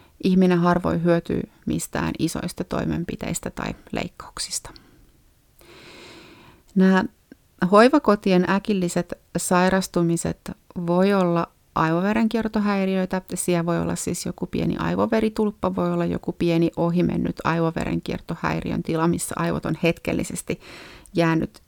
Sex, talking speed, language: female, 95 wpm, Finnish